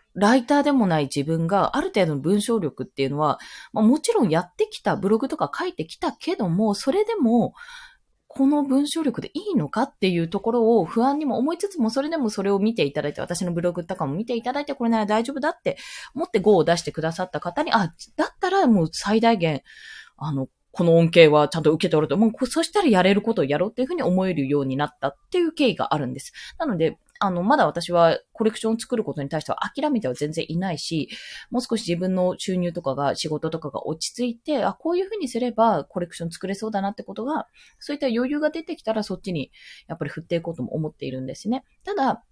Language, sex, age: Japanese, female, 20-39